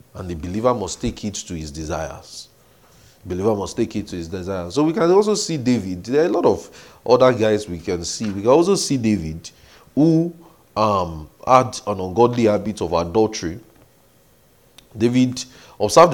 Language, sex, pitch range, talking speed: English, male, 90-120 Hz, 175 wpm